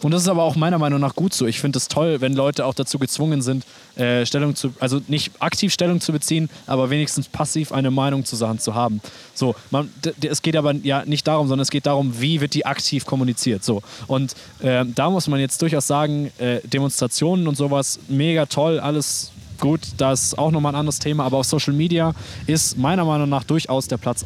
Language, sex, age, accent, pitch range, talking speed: German, male, 20-39, German, 120-145 Hz, 230 wpm